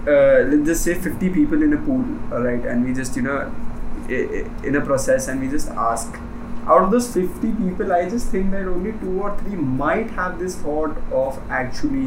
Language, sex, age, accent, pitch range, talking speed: English, male, 20-39, Indian, 140-205 Hz, 210 wpm